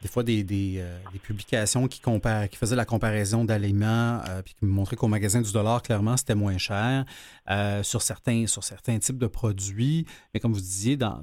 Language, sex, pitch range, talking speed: French, male, 100-120 Hz, 210 wpm